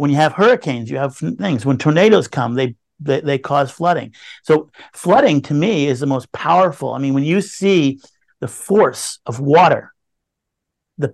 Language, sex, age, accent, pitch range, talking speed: English, male, 50-69, American, 145-180 Hz, 180 wpm